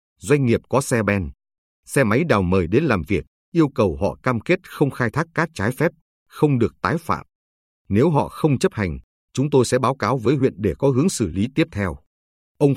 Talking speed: 220 wpm